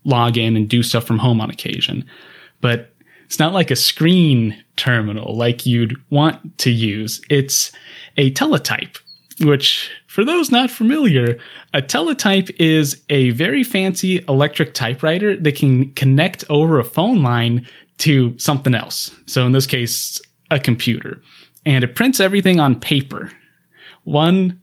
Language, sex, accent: English, male, American